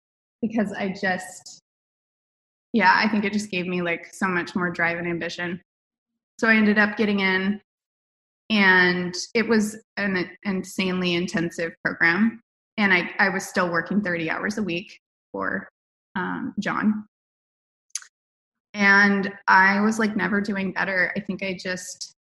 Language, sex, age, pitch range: English, female, 20-39, 170-205 Hz